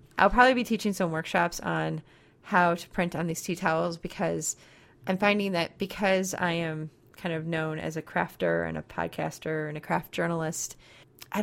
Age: 30-49